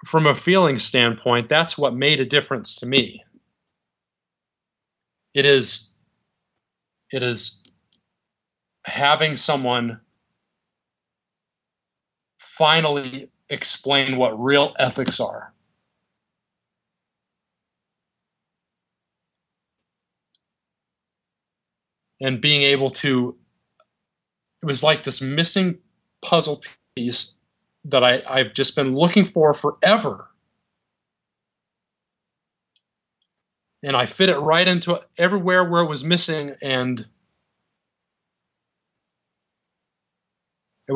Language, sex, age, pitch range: English, male, 40-59, 125-160 Hz